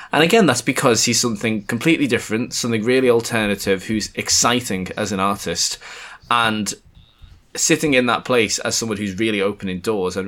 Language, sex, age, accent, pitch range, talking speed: English, male, 20-39, British, 95-120 Hz, 165 wpm